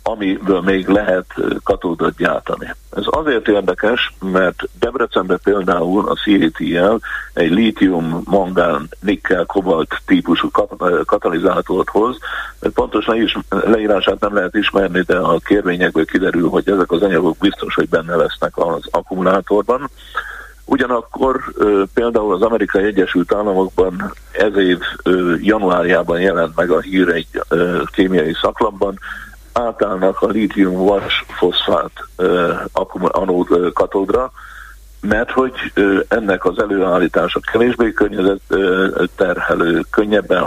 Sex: male